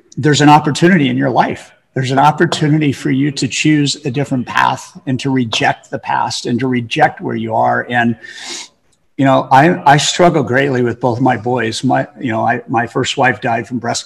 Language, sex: English, male